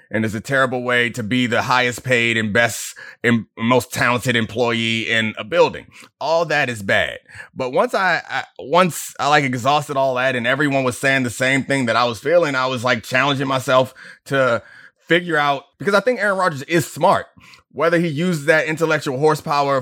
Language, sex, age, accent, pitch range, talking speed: English, male, 30-49, American, 130-180 Hz, 195 wpm